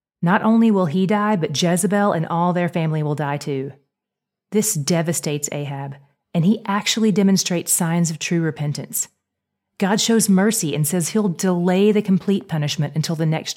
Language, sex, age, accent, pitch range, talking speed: English, female, 30-49, American, 155-210 Hz, 170 wpm